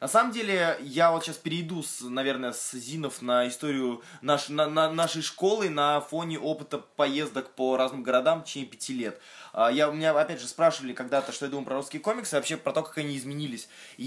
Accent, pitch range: native, 140-185 Hz